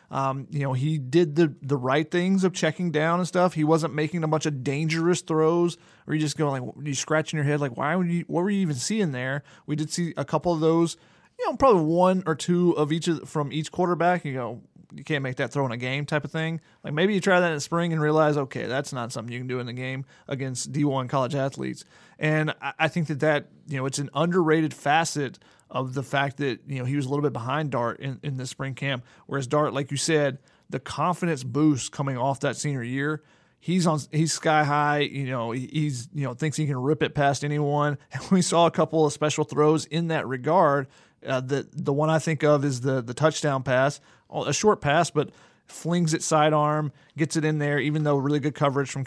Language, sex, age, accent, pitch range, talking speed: English, male, 30-49, American, 140-160 Hz, 245 wpm